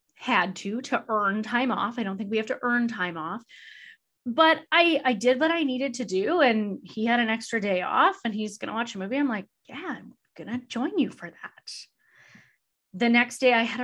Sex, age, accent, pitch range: female, 20-39, American, 200-265 Hz